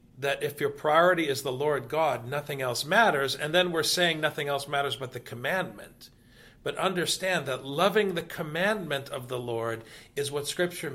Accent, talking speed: American, 180 wpm